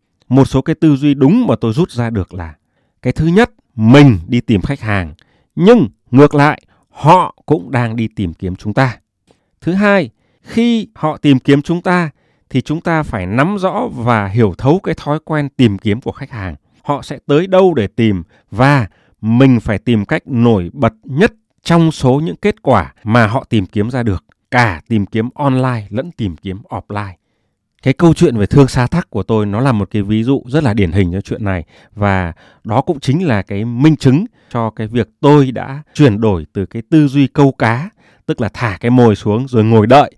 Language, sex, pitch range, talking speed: Vietnamese, male, 110-145 Hz, 210 wpm